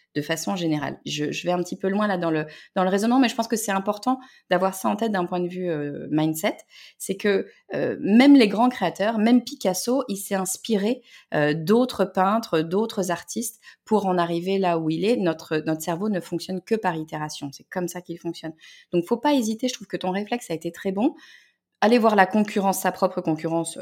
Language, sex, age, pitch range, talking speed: French, female, 30-49, 170-225 Hz, 225 wpm